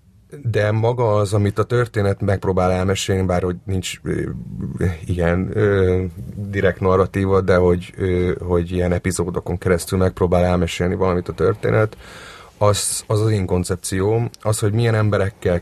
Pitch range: 90-105 Hz